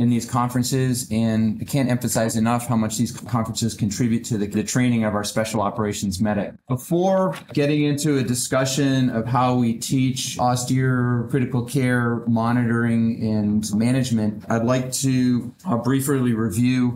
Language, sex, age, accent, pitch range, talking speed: English, male, 30-49, American, 110-125 Hz, 150 wpm